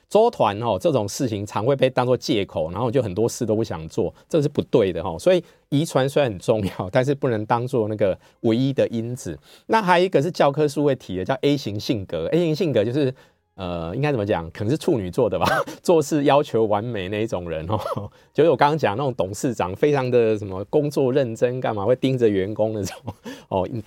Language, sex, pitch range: Chinese, male, 105-150 Hz